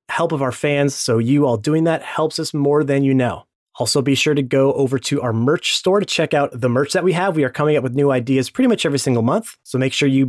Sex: male